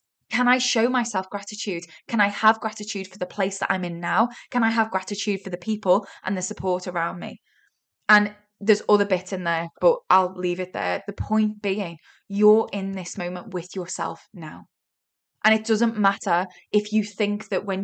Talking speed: 195 wpm